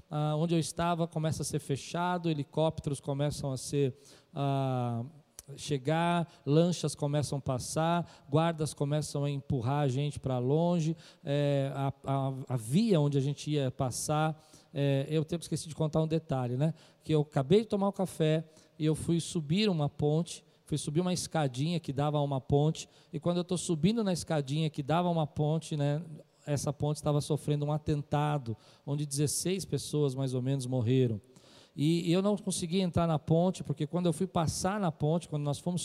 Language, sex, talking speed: Portuguese, male, 180 wpm